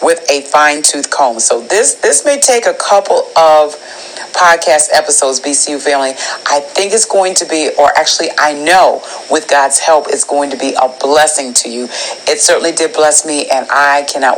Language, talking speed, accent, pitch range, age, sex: English, 190 wpm, American, 140-170 Hz, 40-59, female